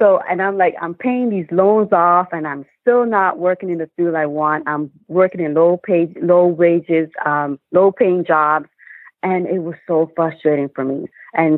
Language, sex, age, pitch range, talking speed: English, female, 30-49, 150-175 Hz, 195 wpm